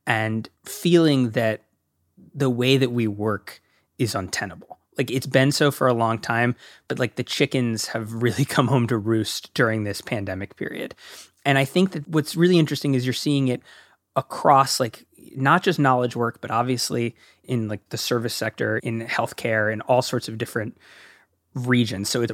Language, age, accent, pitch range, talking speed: English, 20-39, American, 110-135 Hz, 175 wpm